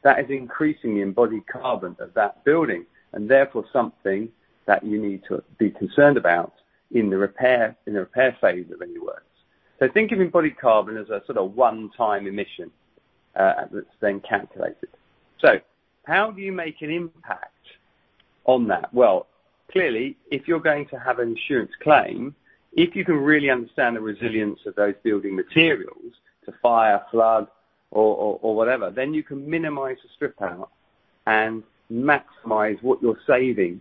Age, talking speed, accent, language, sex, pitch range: 40-59, 165 wpm, British, English, male, 105-150 Hz